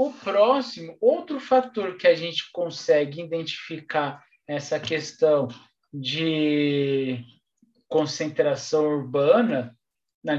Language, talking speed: Portuguese, 80 wpm